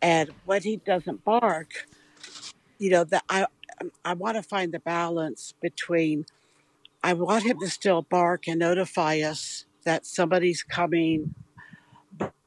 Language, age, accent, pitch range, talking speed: English, 60-79, American, 155-180 Hz, 140 wpm